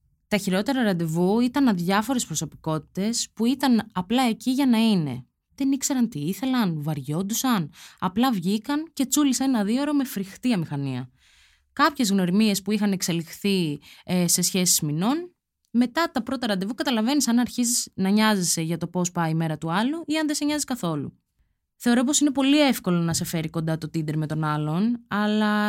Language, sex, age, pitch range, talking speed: Greek, female, 20-39, 170-245 Hz, 170 wpm